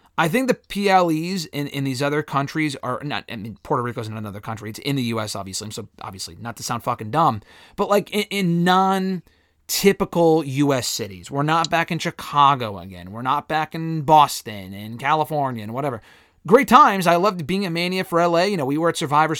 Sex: male